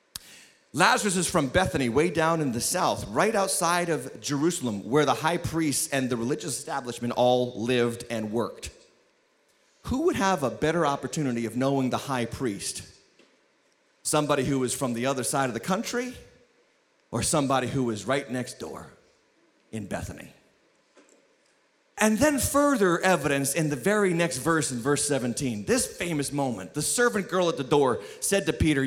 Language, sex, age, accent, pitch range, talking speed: English, male, 30-49, American, 140-235 Hz, 165 wpm